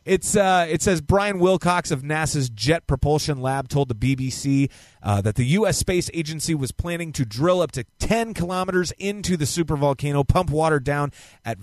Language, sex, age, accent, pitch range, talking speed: English, male, 30-49, American, 115-175 Hz, 180 wpm